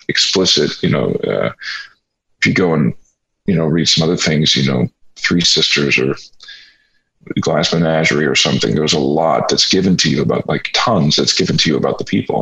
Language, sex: English, male